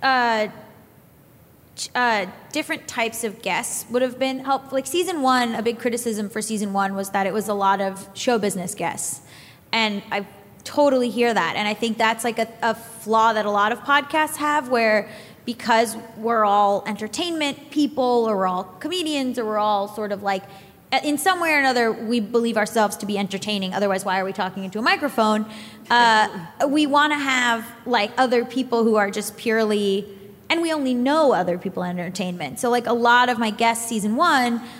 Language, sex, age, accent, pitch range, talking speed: English, female, 20-39, American, 205-255 Hz, 195 wpm